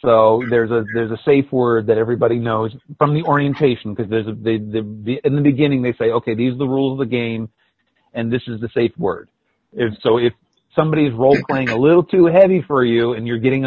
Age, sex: 40-59, male